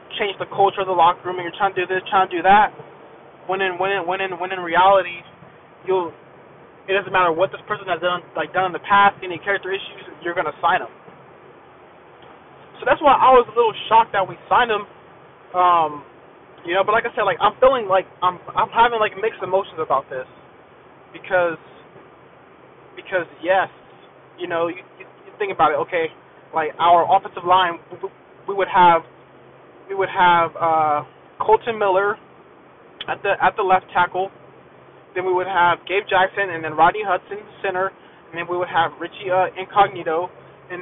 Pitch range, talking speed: 175-205 Hz, 190 wpm